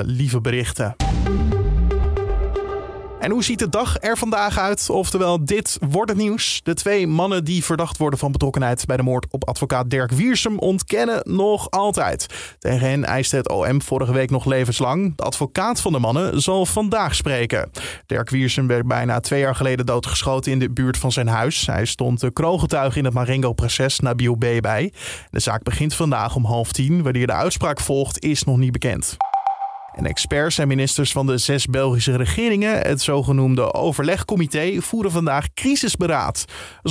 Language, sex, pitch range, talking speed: Dutch, male, 125-180 Hz, 170 wpm